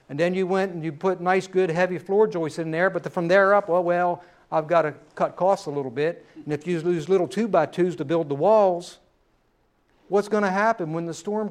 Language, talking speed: English, 235 wpm